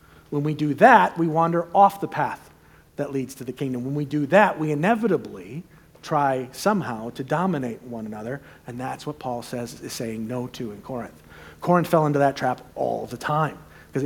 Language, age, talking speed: English, 40-59, 195 wpm